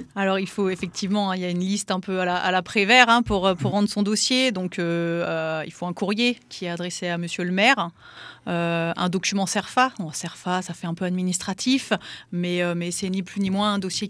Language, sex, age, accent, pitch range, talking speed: French, female, 30-49, French, 170-195 Hz, 235 wpm